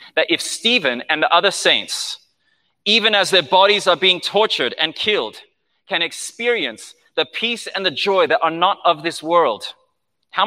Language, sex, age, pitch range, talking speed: English, male, 30-49, 135-175 Hz, 170 wpm